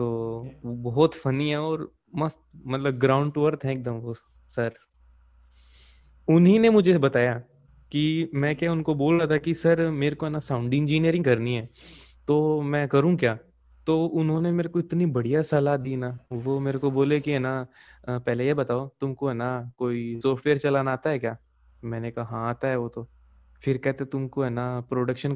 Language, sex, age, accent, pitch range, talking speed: Hindi, male, 20-39, native, 120-150 Hz, 185 wpm